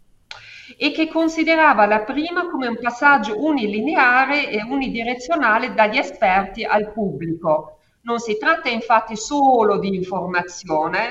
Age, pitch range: 50-69, 215-300 Hz